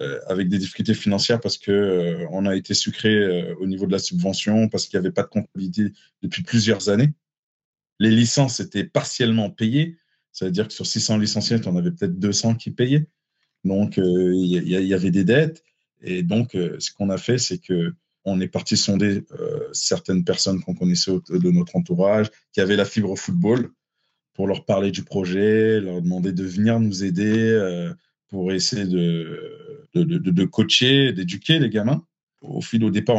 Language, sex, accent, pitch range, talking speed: French, male, French, 100-140 Hz, 185 wpm